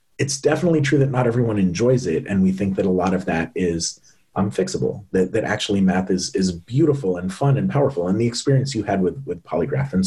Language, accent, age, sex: English, American, 30-49, male